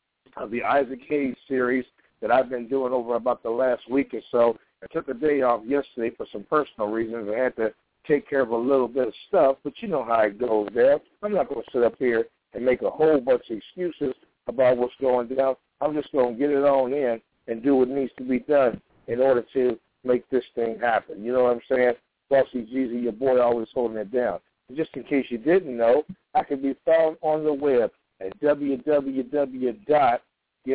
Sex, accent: male, American